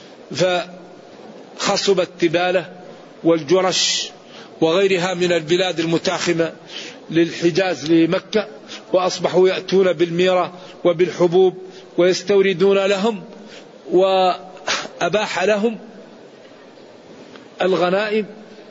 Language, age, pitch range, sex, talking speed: Arabic, 40-59, 165-190 Hz, male, 60 wpm